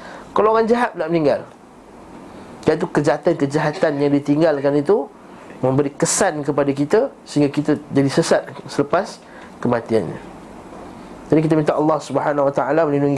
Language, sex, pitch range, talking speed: Malay, male, 135-175 Hz, 130 wpm